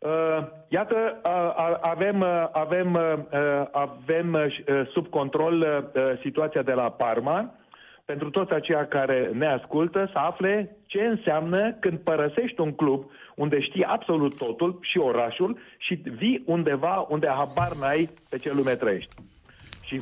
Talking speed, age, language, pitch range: 125 wpm, 40-59, Romanian, 140-175 Hz